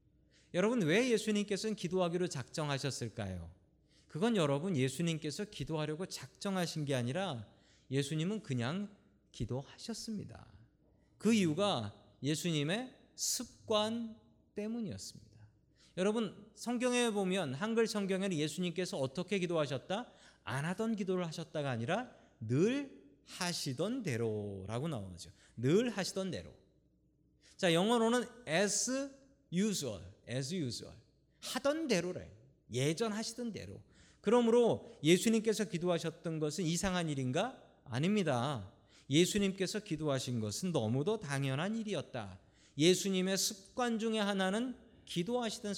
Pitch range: 135-210 Hz